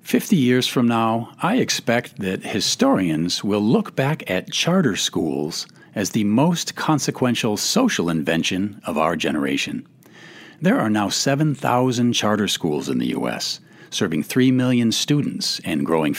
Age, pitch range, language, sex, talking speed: 50-69, 105-160 Hz, English, male, 140 wpm